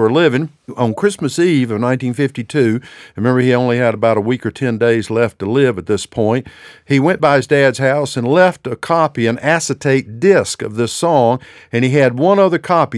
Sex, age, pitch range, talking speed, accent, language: male, 50-69, 110-150 Hz, 210 wpm, American, English